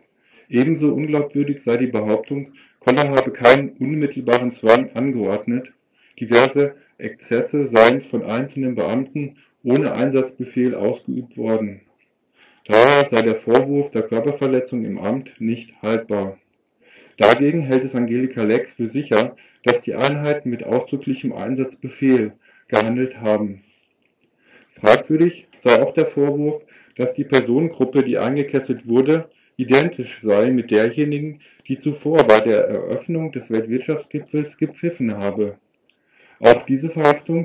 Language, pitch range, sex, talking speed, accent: German, 120-145 Hz, male, 115 wpm, German